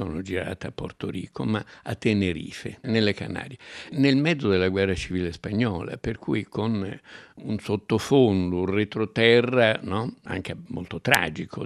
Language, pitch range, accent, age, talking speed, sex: Italian, 95-115 Hz, native, 60-79, 140 wpm, male